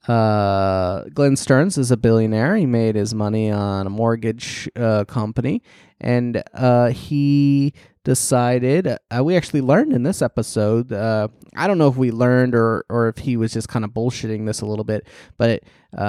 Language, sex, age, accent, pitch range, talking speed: English, male, 20-39, American, 105-125 Hz, 175 wpm